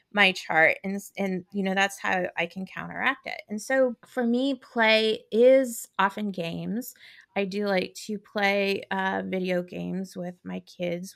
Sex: female